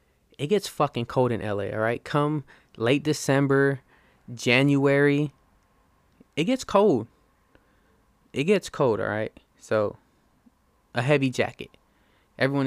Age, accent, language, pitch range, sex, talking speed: 20-39, American, English, 115-130 Hz, male, 120 wpm